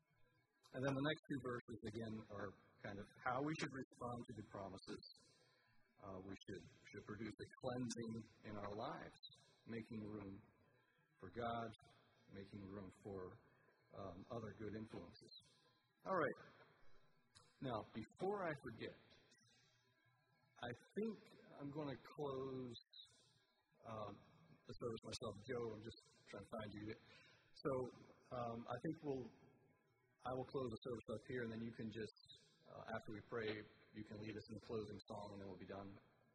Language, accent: English, American